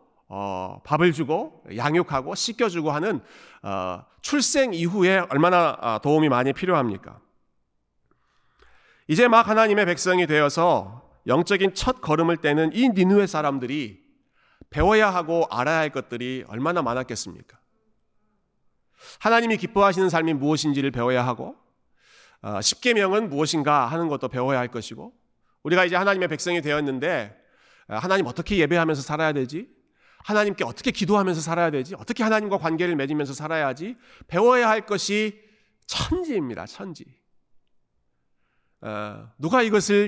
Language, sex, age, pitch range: Korean, male, 40-59, 130-195 Hz